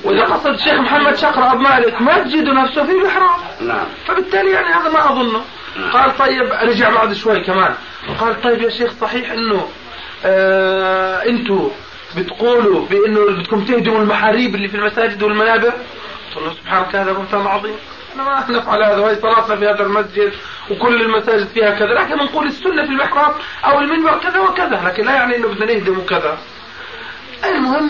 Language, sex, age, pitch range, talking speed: Arabic, male, 30-49, 210-265 Hz, 165 wpm